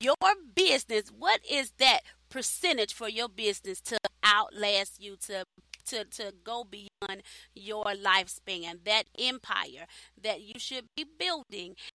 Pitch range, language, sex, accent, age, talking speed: 195-230 Hz, English, female, American, 30-49, 130 wpm